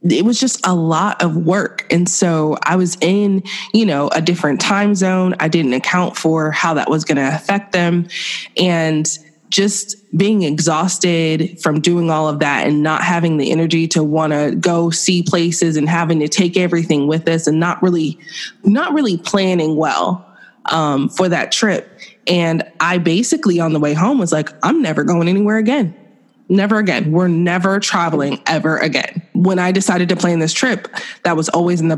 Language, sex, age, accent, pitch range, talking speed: English, female, 20-39, American, 160-200 Hz, 190 wpm